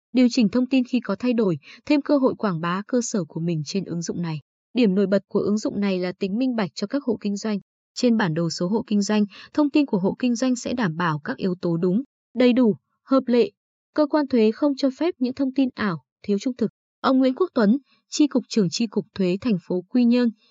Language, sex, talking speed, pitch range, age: Vietnamese, female, 260 wpm, 190-255 Hz, 20-39